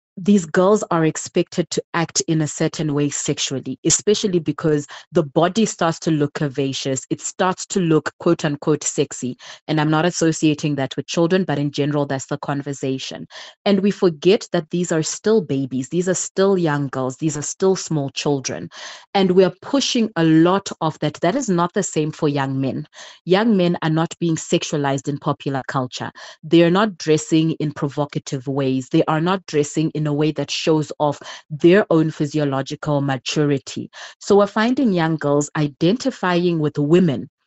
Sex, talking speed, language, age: female, 180 wpm, English, 30-49